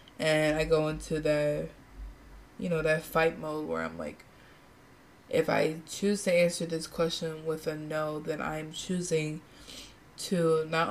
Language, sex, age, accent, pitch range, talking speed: English, female, 20-39, American, 155-175 Hz, 155 wpm